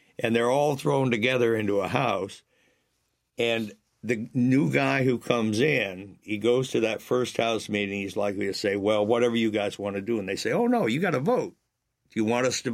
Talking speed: 220 wpm